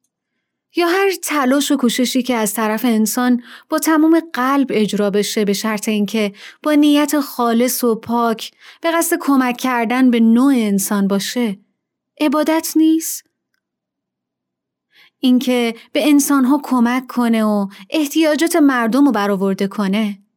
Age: 30-49